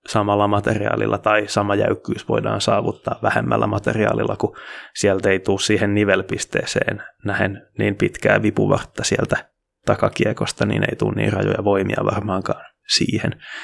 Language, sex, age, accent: Finnish, male, 20-39, native